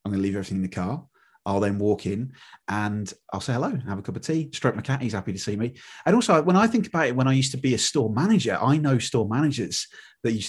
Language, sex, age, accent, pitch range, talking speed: English, male, 30-49, British, 110-155 Hz, 285 wpm